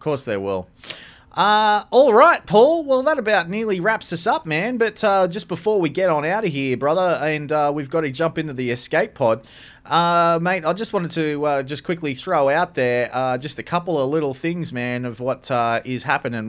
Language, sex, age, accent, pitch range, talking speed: English, male, 30-49, Australian, 115-150 Hz, 225 wpm